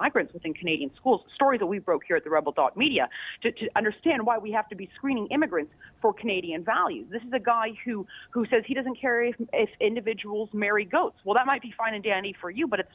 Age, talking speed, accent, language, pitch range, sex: 30-49, 245 wpm, American, English, 210-295 Hz, female